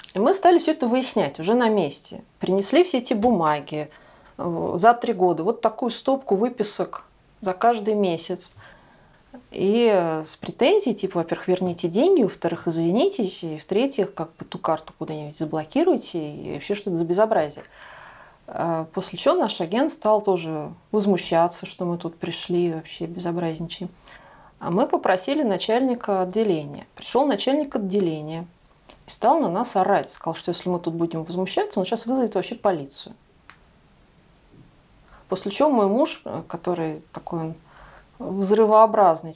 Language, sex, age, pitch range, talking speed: Russian, female, 30-49, 170-220 Hz, 135 wpm